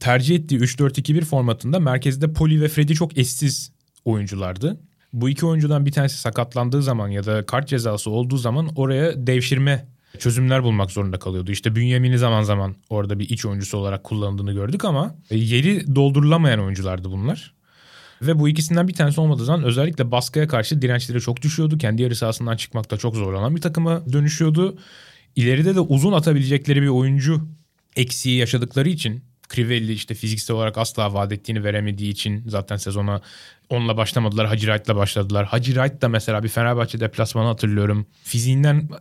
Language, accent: Turkish, native